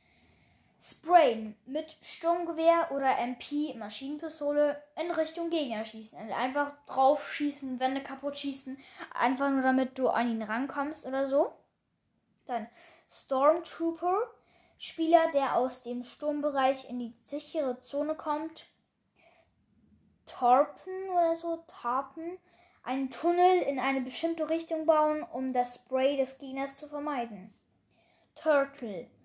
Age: 10-29